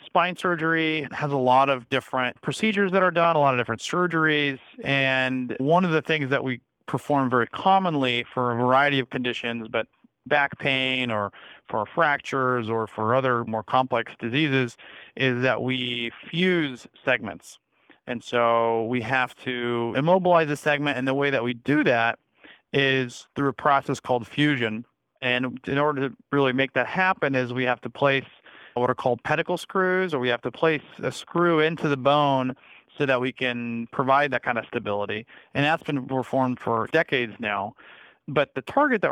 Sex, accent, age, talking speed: male, American, 40-59, 180 wpm